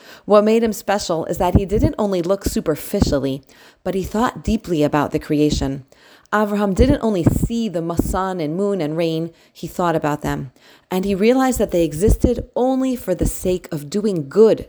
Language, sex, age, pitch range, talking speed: English, female, 30-49, 175-220 Hz, 185 wpm